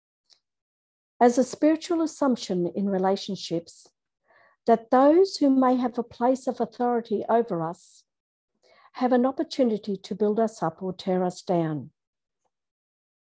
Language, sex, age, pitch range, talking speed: English, female, 50-69, 190-245 Hz, 125 wpm